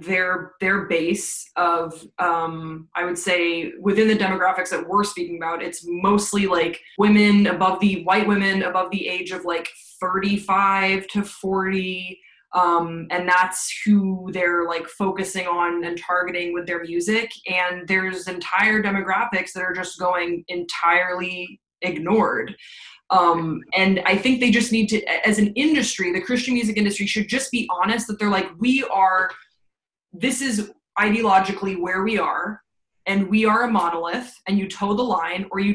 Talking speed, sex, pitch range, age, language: 160 wpm, female, 175-205 Hz, 20-39, English